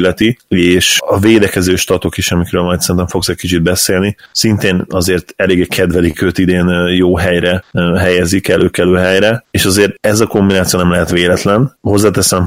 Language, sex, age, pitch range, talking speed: Hungarian, male, 30-49, 90-100 Hz, 155 wpm